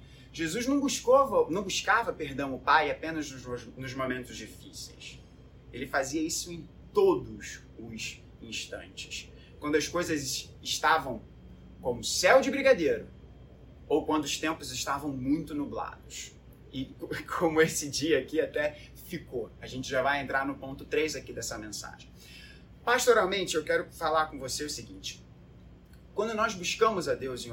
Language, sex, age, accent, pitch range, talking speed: Portuguese, male, 20-39, Brazilian, 125-165 Hz, 145 wpm